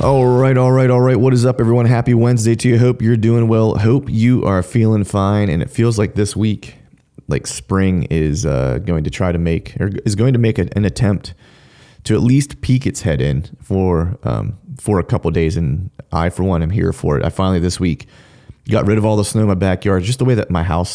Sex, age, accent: male, 30-49, American